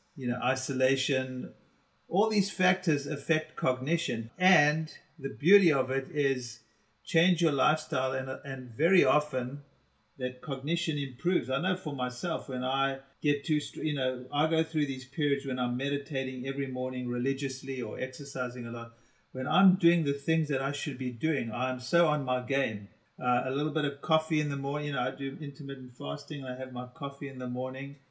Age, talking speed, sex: 50-69, 185 wpm, male